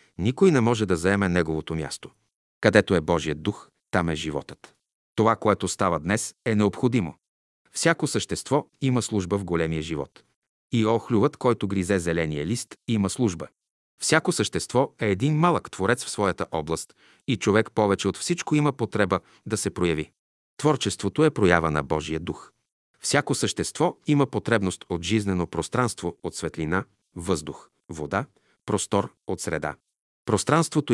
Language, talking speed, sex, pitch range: Bulgarian, 145 wpm, male, 95-125 Hz